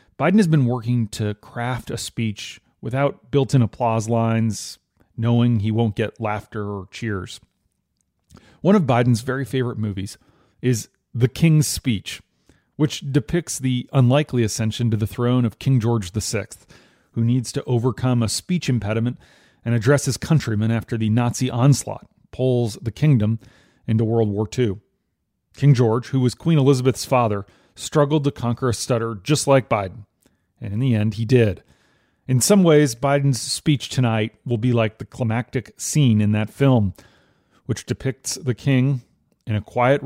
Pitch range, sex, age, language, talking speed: 110-135 Hz, male, 40-59, English, 160 wpm